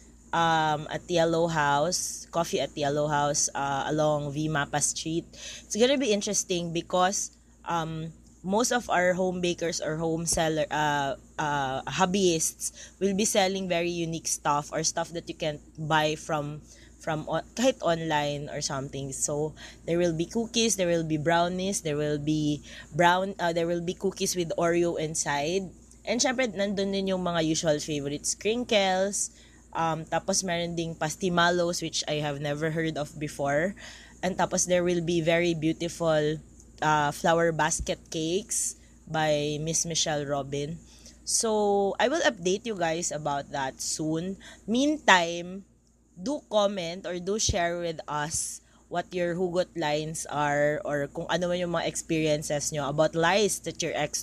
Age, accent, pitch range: 20-39, Filipino, 150-180 Hz